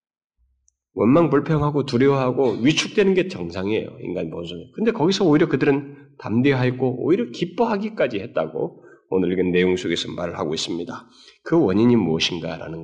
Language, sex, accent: Korean, male, native